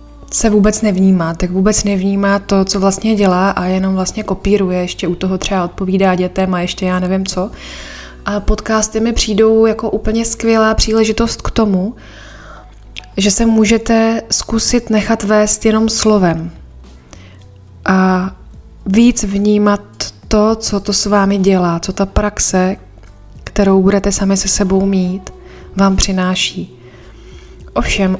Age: 20-39